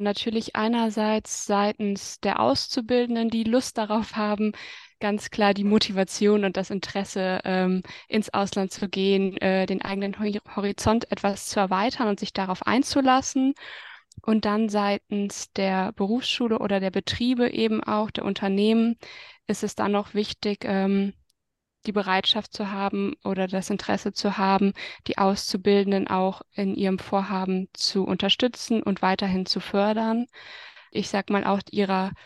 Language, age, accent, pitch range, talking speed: German, 20-39, German, 195-215 Hz, 135 wpm